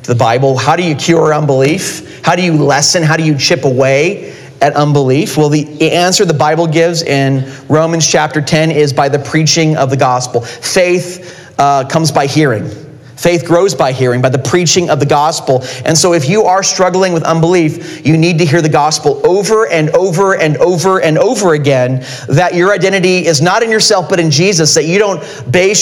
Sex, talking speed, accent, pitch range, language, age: male, 200 wpm, American, 150-195 Hz, English, 40-59